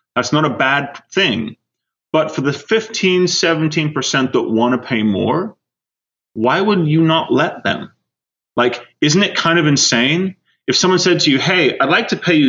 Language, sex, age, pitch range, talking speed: English, male, 30-49, 115-165 Hz, 185 wpm